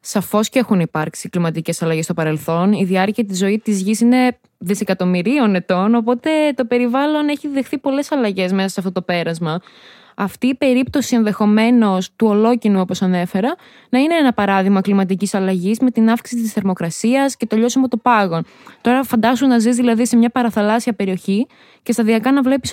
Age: 20-39